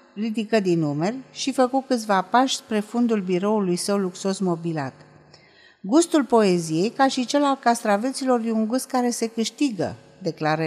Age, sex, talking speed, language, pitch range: 50-69, female, 150 wpm, Romanian, 175-245 Hz